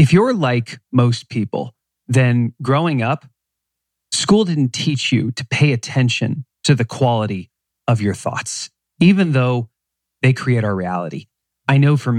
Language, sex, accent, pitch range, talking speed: English, male, American, 115-150 Hz, 150 wpm